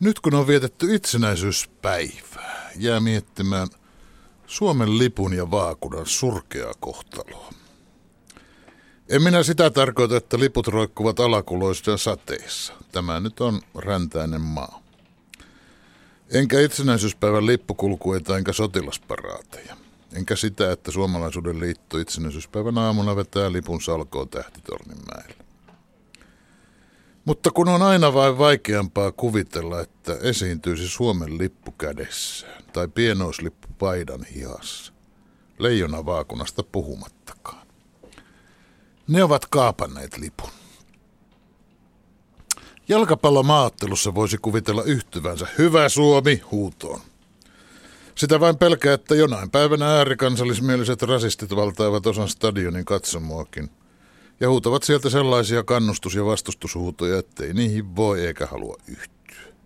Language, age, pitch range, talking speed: Finnish, 60-79, 90-130 Hz, 100 wpm